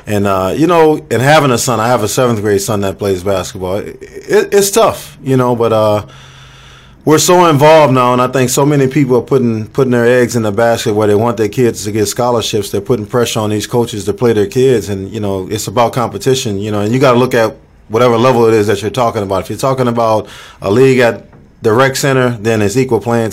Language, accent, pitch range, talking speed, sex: English, American, 105-130 Hz, 245 wpm, male